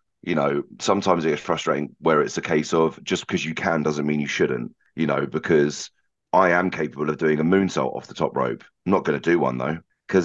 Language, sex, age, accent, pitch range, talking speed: English, male, 30-49, British, 75-85 Hz, 240 wpm